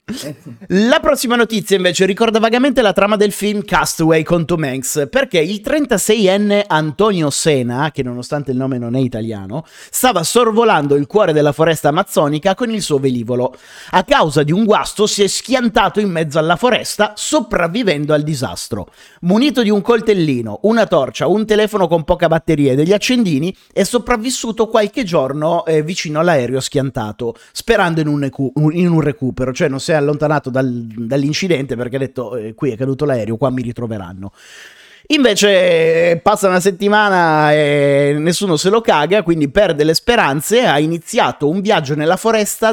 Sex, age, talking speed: male, 30-49, 160 wpm